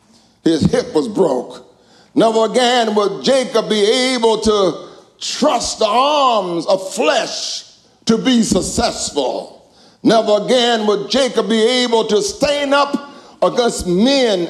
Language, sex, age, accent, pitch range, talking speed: English, male, 60-79, American, 200-265 Hz, 125 wpm